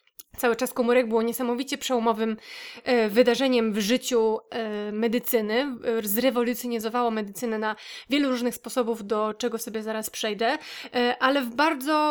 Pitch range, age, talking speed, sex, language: 225-255 Hz, 20-39, 120 wpm, female, Polish